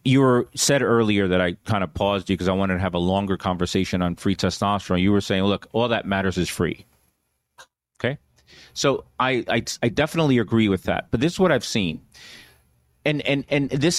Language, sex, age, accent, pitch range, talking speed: English, male, 30-49, American, 90-120 Hz, 210 wpm